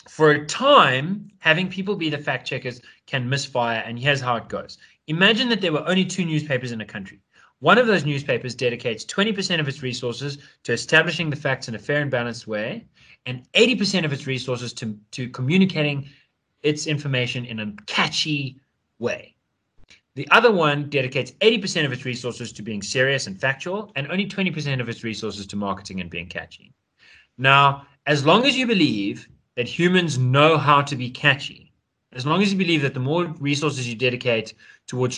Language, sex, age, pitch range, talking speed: English, male, 20-39, 120-160 Hz, 185 wpm